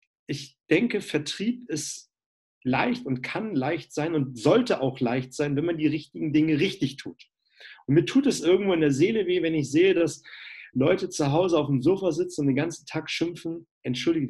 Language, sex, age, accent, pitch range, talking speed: German, male, 40-59, German, 145-175 Hz, 195 wpm